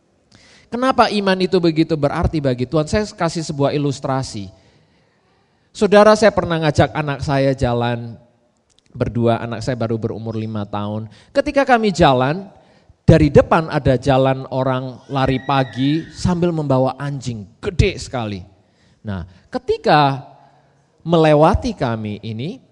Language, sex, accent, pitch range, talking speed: English, male, Indonesian, 115-170 Hz, 120 wpm